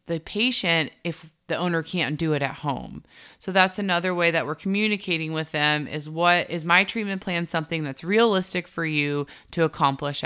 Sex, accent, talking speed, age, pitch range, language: female, American, 185 wpm, 30-49, 155-200 Hz, English